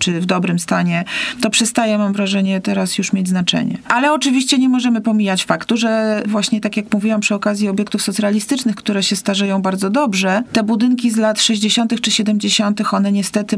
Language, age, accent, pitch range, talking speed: Polish, 30-49, native, 190-220 Hz, 180 wpm